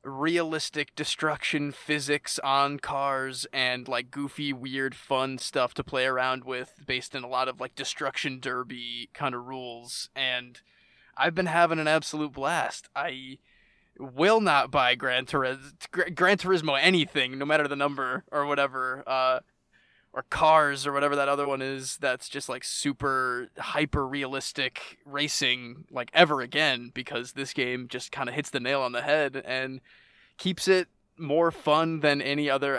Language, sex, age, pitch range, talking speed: English, male, 20-39, 130-150 Hz, 160 wpm